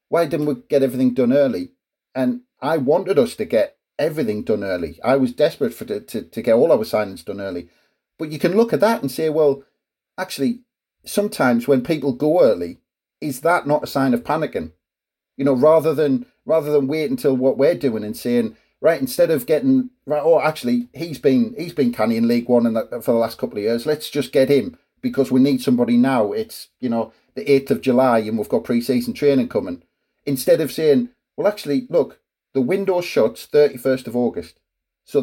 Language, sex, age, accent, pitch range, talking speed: English, male, 40-59, British, 130-205 Hz, 205 wpm